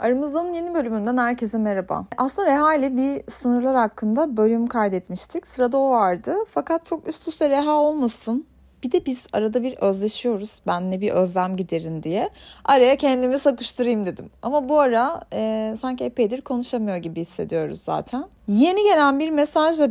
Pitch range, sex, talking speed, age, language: 215-275 Hz, female, 155 wpm, 30-49, Turkish